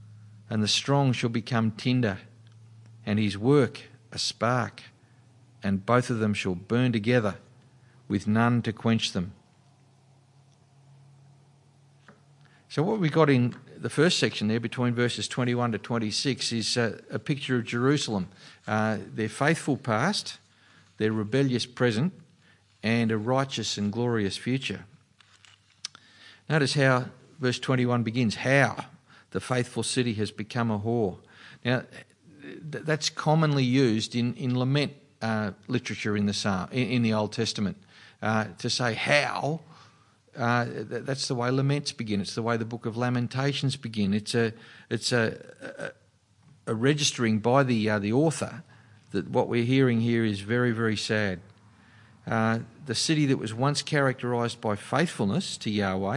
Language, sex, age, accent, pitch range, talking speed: English, male, 50-69, Australian, 110-135 Hz, 145 wpm